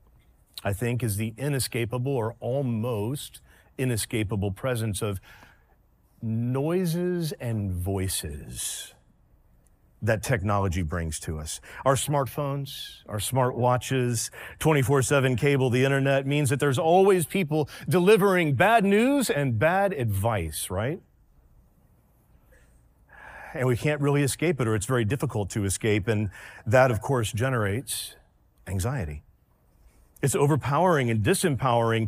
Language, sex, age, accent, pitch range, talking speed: English, male, 40-59, American, 105-150 Hz, 110 wpm